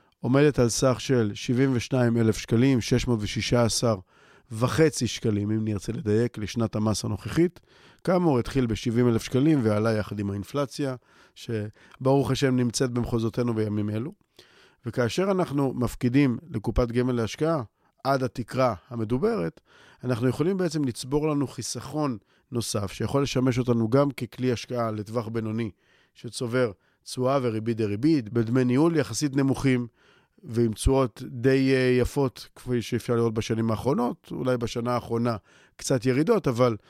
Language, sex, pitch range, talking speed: Hebrew, male, 110-135 Hz, 120 wpm